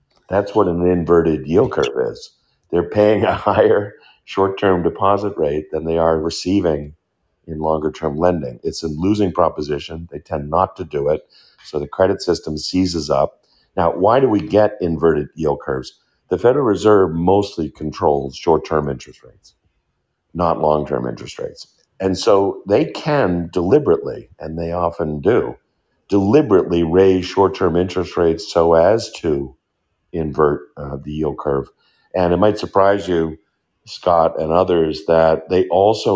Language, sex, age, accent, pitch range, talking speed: English, male, 50-69, American, 80-95 Hz, 150 wpm